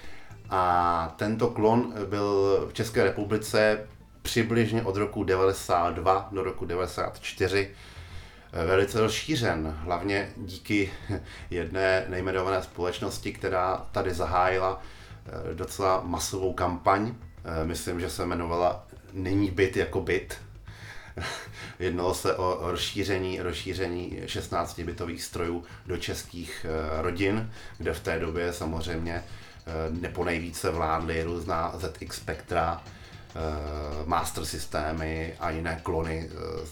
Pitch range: 85-110 Hz